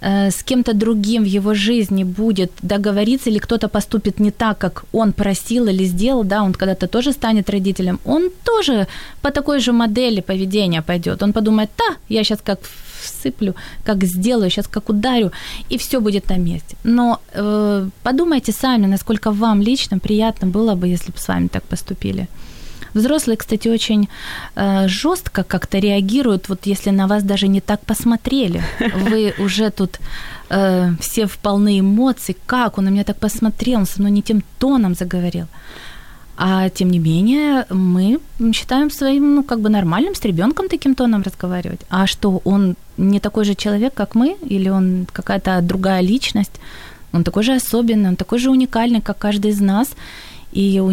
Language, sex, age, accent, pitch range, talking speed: Ukrainian, female, 20-39, native, 190-235 Hz, 170 wpm